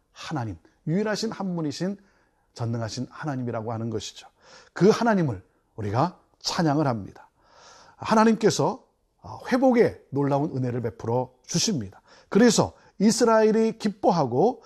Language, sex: Korean, male